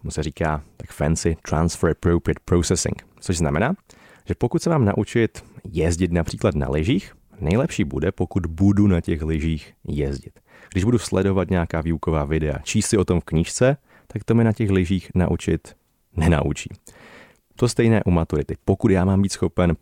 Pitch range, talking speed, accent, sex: 80-100 Hz, 170 wpm, native, male